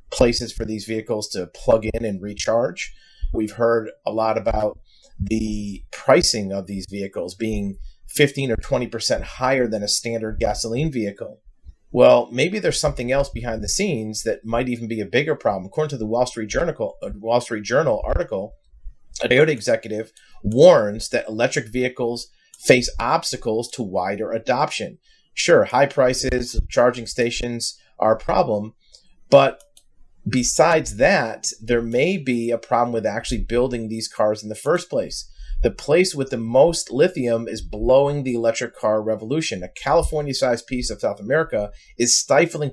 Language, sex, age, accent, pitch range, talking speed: English, male, 30-49, American, 110-125 Hz, 155 wpm